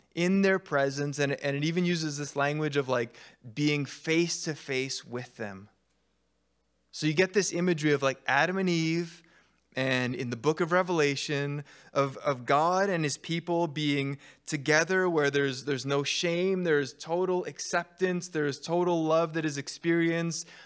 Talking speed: 155 wpm